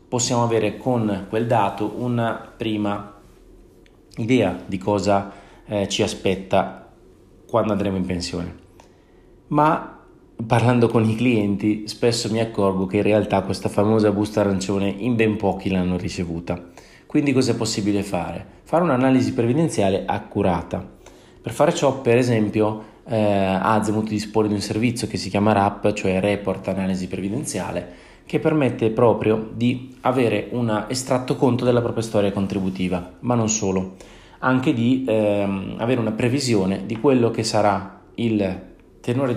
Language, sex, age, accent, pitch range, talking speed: Italian, male, 30-49, native, 95-115 Hz, 145 wpm